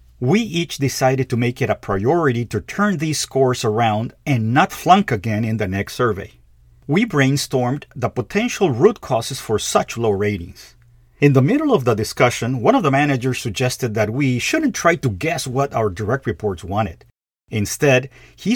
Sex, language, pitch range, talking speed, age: male, English, 110-150 Hz, 180 wpm, 50-69